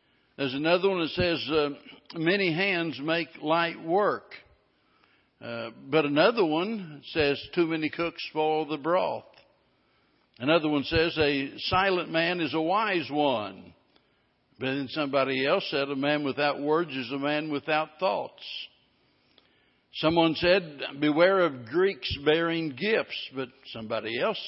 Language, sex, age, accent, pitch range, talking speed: English, male, 60-79, American, 140-175 Hz, 135 wpm